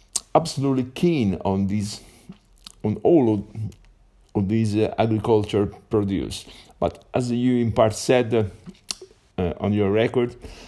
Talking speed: 130 wpm